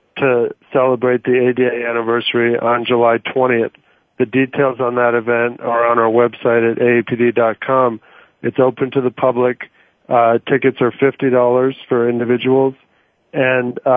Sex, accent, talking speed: male, American, 135 wpm